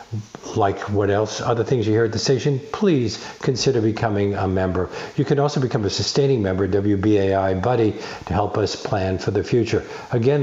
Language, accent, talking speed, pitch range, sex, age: English, American, 185 wpm, 100-130 Hz, male, 50-69